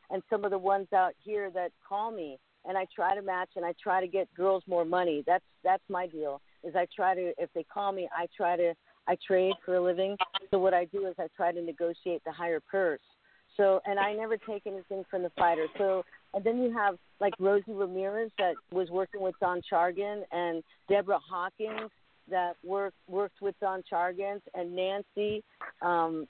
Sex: female